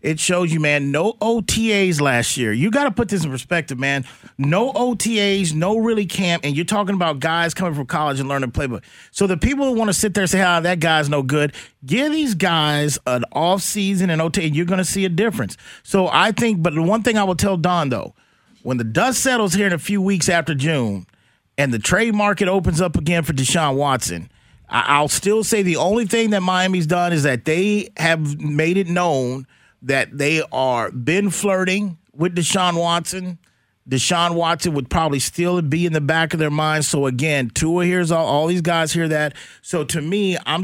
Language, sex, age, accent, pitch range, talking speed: English, male, 40-59, American, 140-185 Hz, 220 wpm